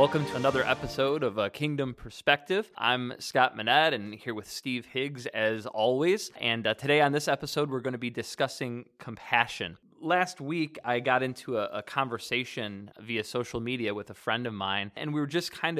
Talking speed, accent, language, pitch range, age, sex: 195 wpm, American, English, 110-145 Hz, 20-39, male